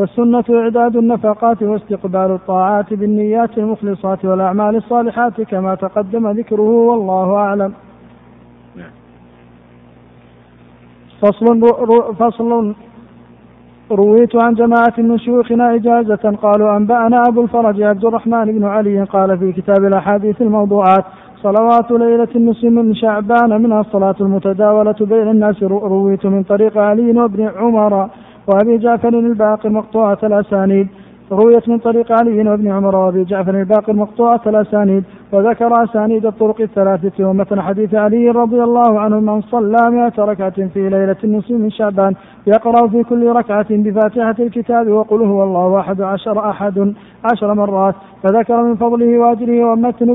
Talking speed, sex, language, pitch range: 130 wpm, male, Arabic, 195-235 Hz